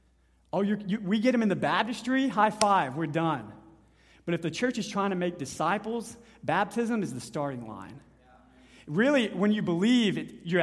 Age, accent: 30-49, American